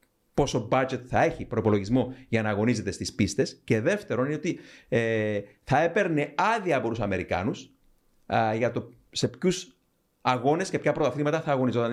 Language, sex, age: Greek, male, 40-59